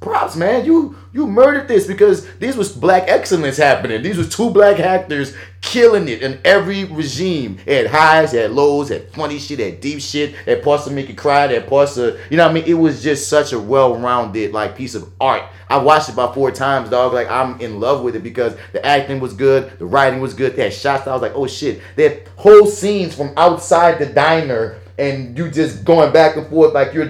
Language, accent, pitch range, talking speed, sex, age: English, American, 140-180 Hz, 220 wpm, male, 30-49